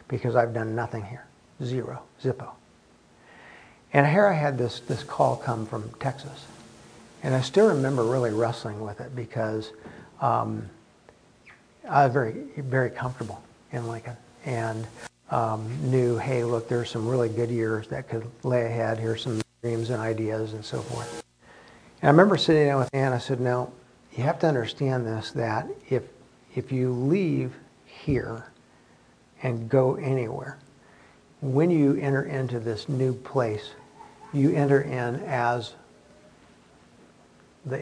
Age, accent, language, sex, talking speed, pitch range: 60-79, American, English, male, 145 wpm, 115-135 Hz